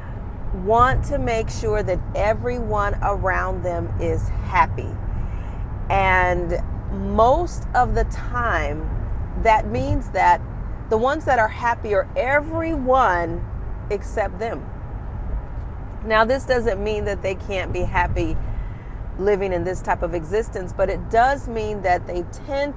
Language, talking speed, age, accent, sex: English, 125 wpm, 40-59, American, female